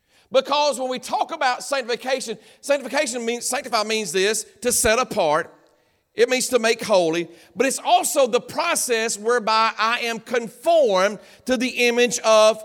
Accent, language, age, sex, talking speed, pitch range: American, English, 50-69, male, 150 wpm, 220-270 Hz